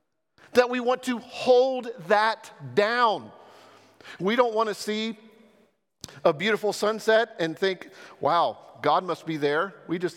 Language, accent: English, American